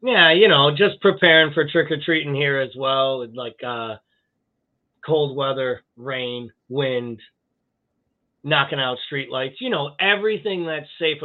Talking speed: 145 wpm